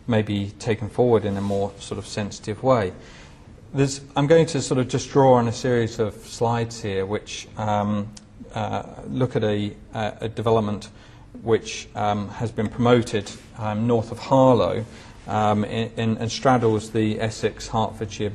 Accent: British